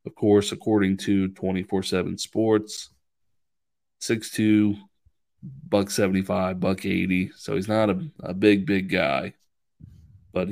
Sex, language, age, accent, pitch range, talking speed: male, English, 20-39, American, 95-105 Hz, 135 wpm